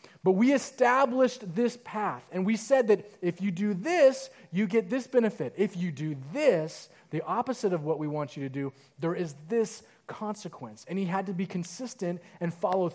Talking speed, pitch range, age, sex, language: 195 wpm, 165-210 Hz, 30-49, male, English